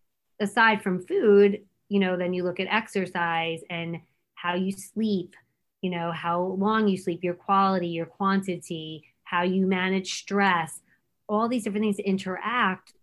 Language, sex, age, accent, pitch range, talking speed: English, female, 20-39, American, 170-195 Hz, 150 wpm